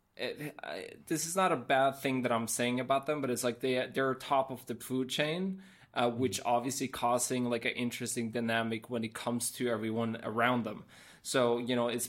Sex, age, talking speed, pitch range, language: male, 20-39, 215 wpm, 115-130 Hz, English